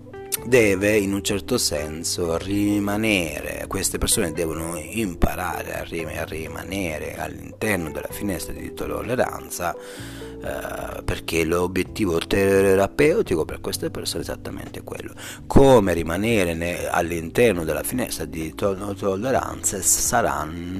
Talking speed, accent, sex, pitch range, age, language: 100 wpm, native, male, 85-100 Hz, 30-49, Italian